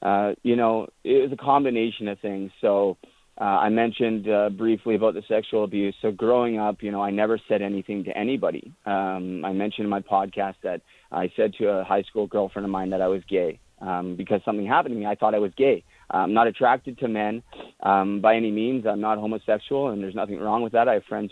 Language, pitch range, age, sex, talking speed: English, 105-135 Hz, 30-49, male, 235 wpm